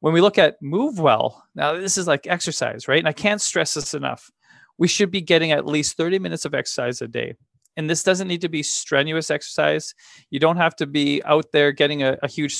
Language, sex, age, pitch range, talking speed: English, male, 30-49, 125-165 Hz, 235 wpm